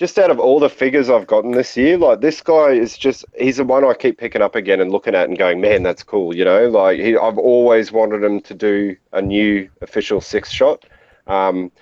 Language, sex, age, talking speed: English, male, 30-49, 235 wpm